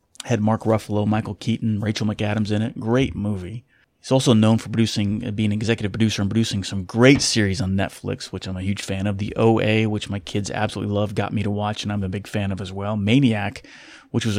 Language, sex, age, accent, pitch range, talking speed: English, male, 30-49, American, 100-115 Hz, 230 wpm